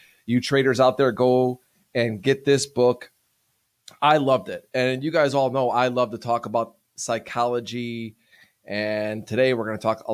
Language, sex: English, male